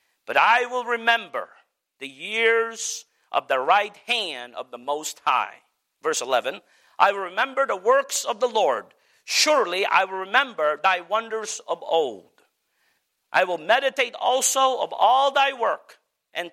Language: English